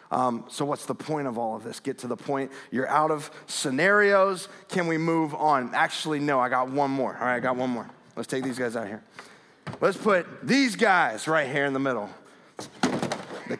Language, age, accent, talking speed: English, 30-49, American, 215 wpm